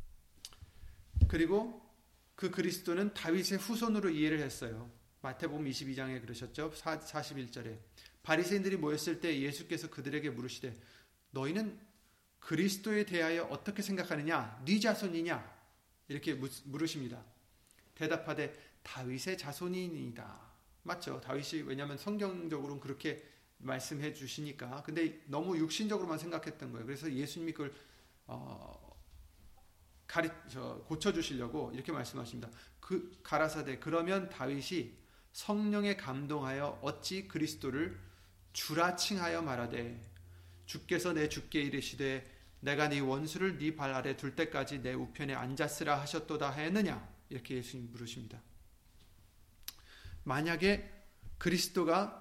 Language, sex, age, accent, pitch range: Korean, male, 30-49, native, 120-165 Hz